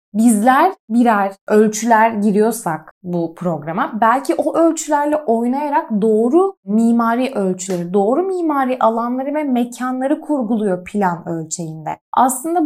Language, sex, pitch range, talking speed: Turkish, female, 210-300 Hz, 105 wpm